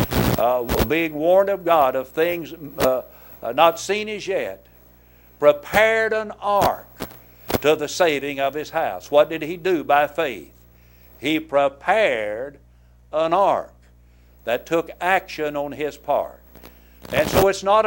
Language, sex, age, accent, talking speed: English, male, 60-79, American, 140 wpm